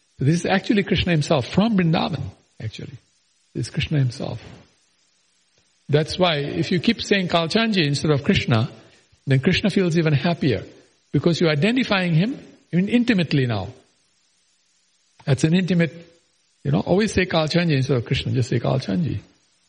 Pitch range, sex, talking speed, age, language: 115-170 Hz, male, 145 wpm, 50-69, English